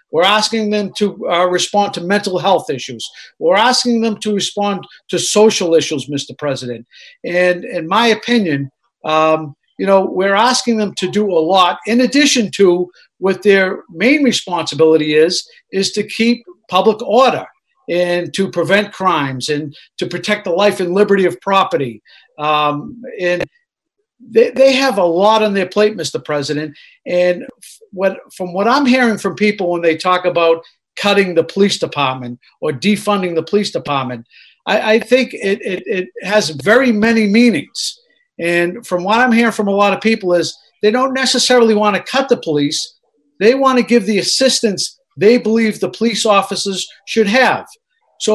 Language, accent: English, American